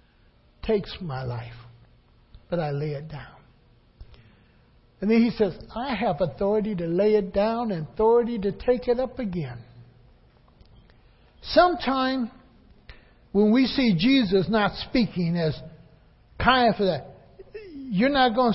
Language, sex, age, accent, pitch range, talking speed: English, male, 60-79, American, 170-250 Hz, 130 wpm